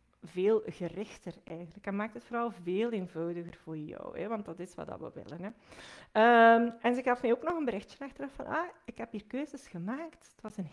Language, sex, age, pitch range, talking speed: Dutch, female, 40-59, 190-260 Hz, 220 wpm